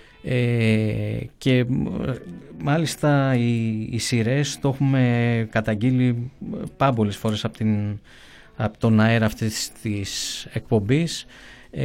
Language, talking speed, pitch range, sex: Greek, 80 wpm, 110-140 Hz, male